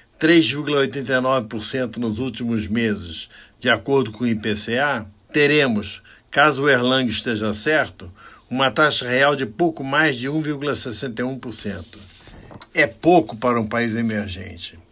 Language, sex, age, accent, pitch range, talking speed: Portuguese, male, 60-79, Brazilian, 110-150 Hz, 115 wpm